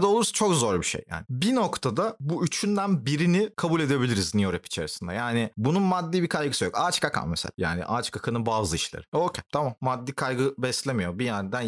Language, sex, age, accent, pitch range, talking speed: Turkish, male, 30-49, native, 110-170 Hz, 190 wpm